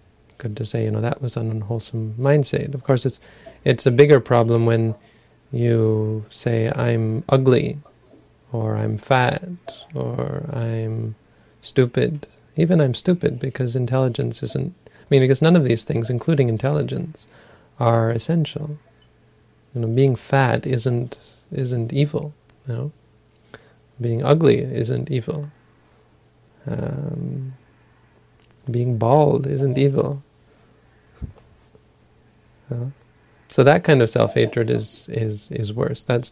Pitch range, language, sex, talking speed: 115-145 Hz, English, male, 120 wpm